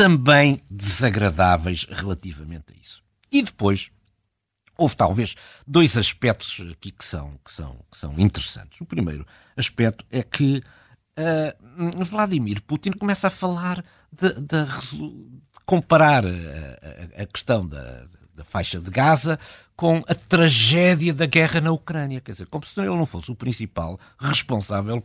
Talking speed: 130 wpm